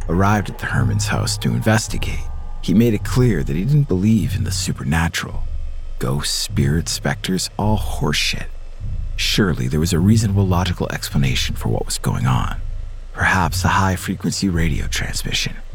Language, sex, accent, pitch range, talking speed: English, male, American, 80-105 Hz, 155 wpm